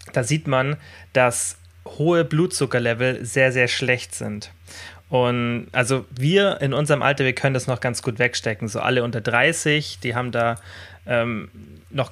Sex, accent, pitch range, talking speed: male, German, 115-135 Hz, 160 wpm